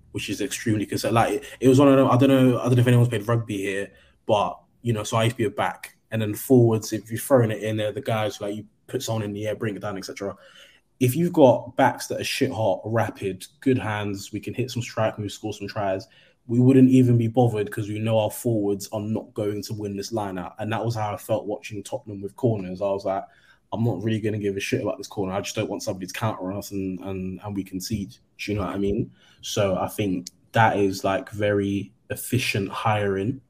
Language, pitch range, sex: English, 100-115 Hz, male